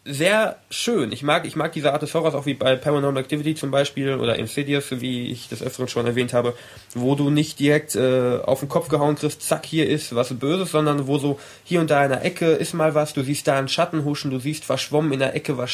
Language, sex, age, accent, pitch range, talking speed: German, male, 20-39, German, 125-155 Hz, 250 wpm